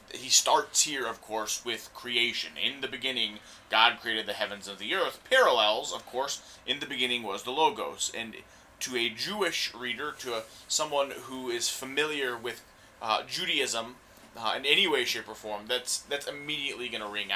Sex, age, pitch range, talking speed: male, 30-49, 120-150 Hz, 185 wpm